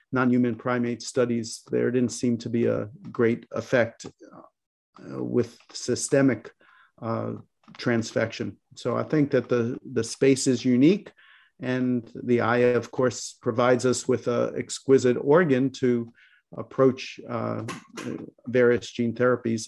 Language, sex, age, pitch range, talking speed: English, male, 50-69, 120-135 Hz, 125 wpm